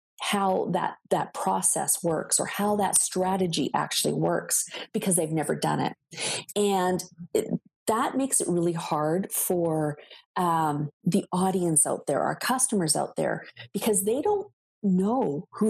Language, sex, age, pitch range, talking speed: English, female, 40-59, 175-240 Hz, 145 wpm